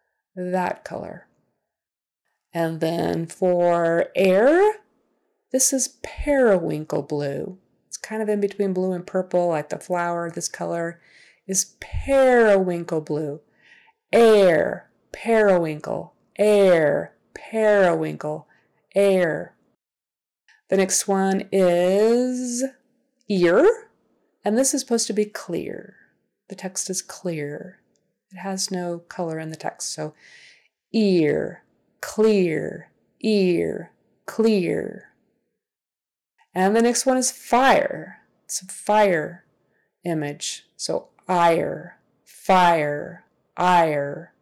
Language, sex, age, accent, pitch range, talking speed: English, female, 30-49, American, 170-220 Hz, 100 wpm